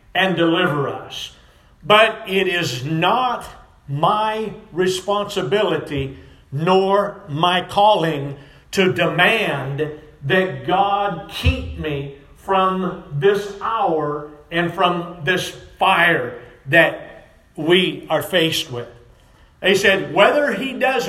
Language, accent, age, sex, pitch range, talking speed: English, American, 50-69, male, 145-210 Hz, 100 wpm